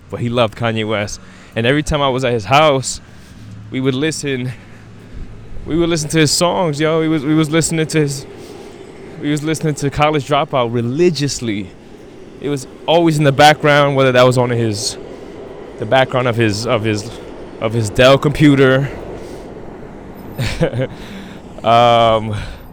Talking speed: 155 wpm